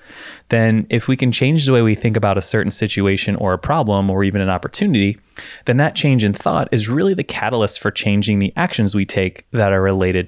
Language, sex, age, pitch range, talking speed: English, male, 20-39, 100-120 Hz, 220 wpm